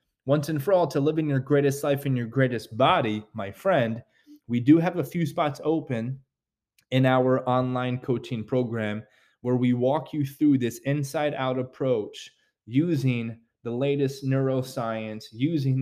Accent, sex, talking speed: American, male, 160 wpm